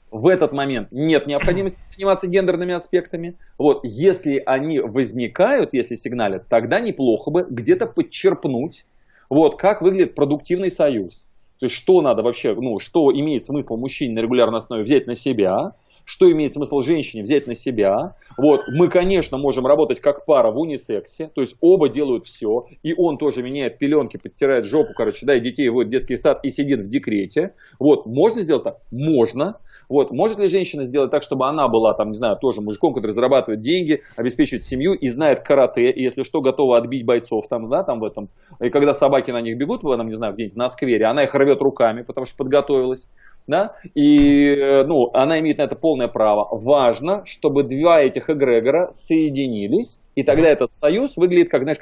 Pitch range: 130-175 Hz